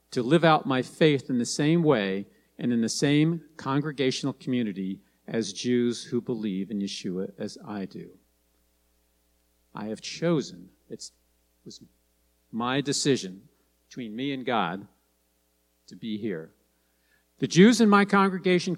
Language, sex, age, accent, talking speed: English, male, 50-69, American, 135 wpm